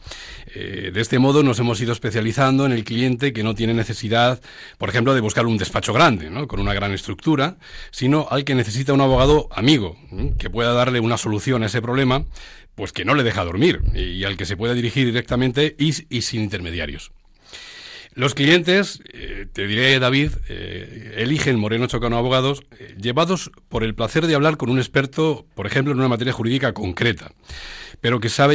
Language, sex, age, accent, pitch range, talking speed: Spanish, male, 40-59, Spanish, 105-135 Hz, 185 wpm